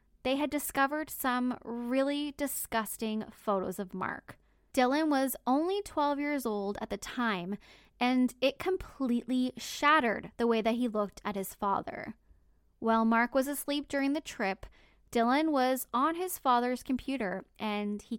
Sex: female